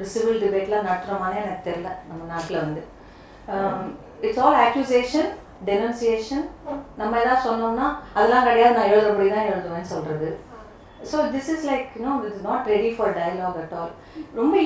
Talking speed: 160 wpm